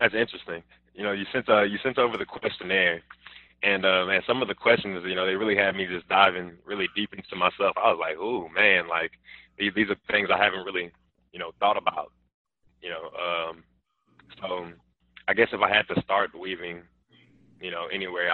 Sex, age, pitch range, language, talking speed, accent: male, 20-39, 85-95 Hz, English, 205 wpm, American